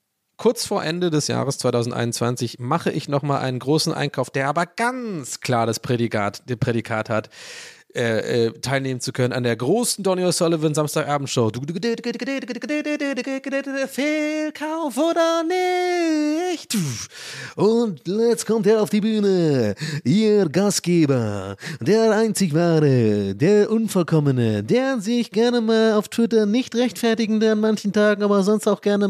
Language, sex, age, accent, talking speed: German, male, 30-49, German, 130 wpm